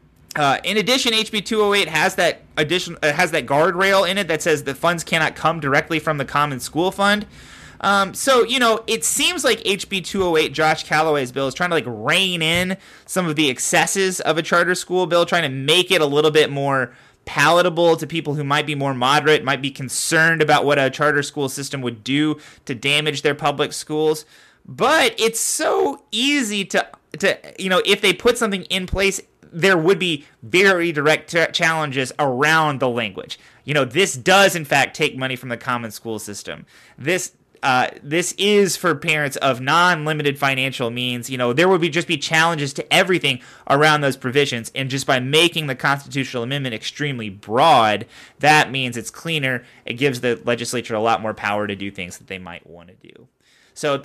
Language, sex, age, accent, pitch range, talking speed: English, male, 20-39, American, 130-175 Hz, 195 wpm